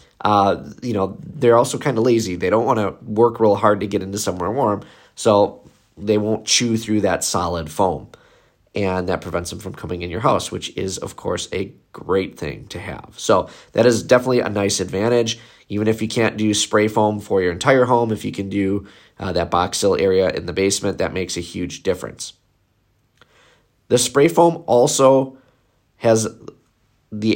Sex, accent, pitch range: male, American, 100-120 Hz